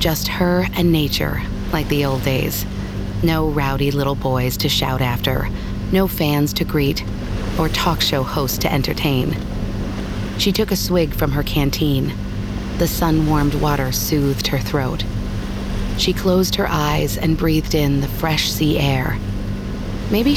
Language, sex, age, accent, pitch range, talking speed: English, female, 40-59, American, 105-160 Hz, 145 wpm